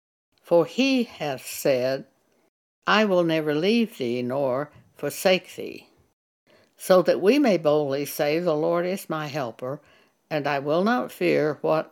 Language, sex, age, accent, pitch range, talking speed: English, female, 60-79, American, 145-195 Hz, 145 wpm